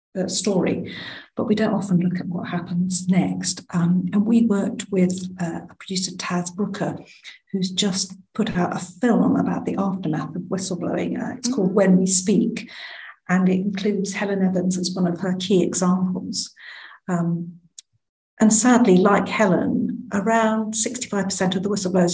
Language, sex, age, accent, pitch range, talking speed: English, female, 50-69, British, 175-210 Hz, 155 wpm